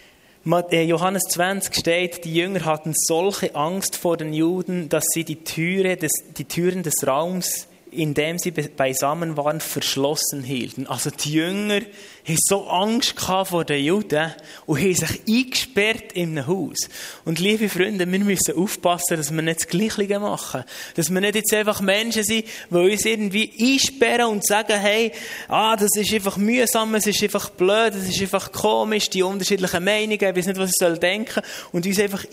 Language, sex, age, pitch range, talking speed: German, male, 20-39, 155-195 Hz, 175 wpm